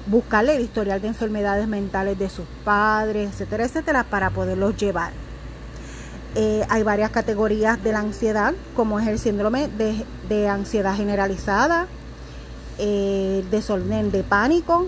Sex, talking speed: female, 135 wpm